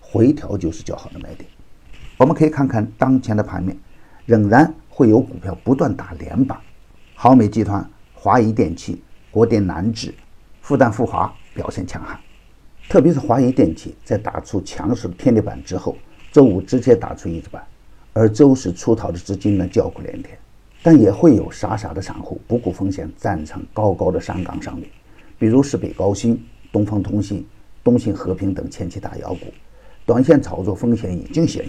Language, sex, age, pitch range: Chinese, male, 50-69, 95-125 Hz